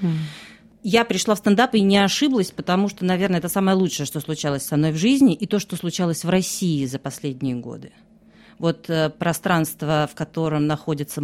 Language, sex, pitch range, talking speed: Russian, female, 150-220 Hz, 180 wpm